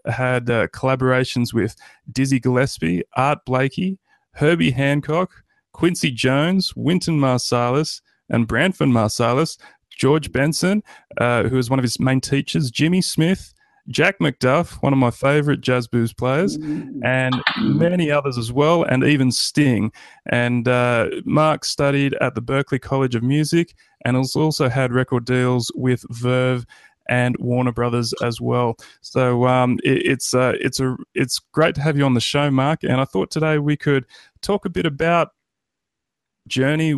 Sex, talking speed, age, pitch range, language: male, 155 wpm, 30-49, 125-150 Hz, English